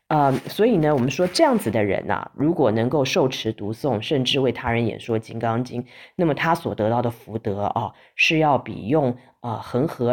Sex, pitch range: female, 115-155 Hz